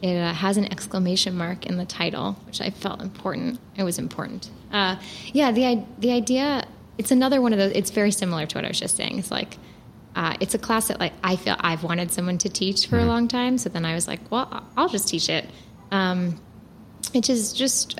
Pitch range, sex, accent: 175-205 Hz, female, American